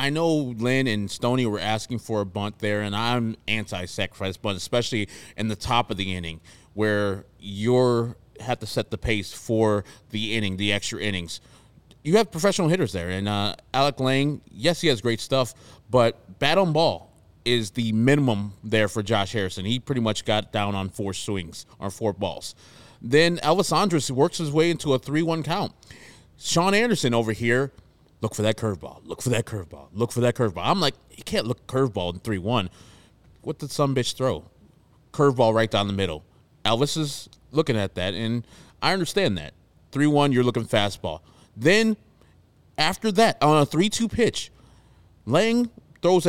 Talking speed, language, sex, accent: 180 wpm, English, male, American